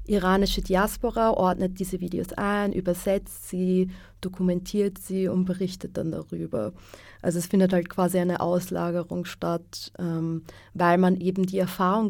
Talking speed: 140 wpm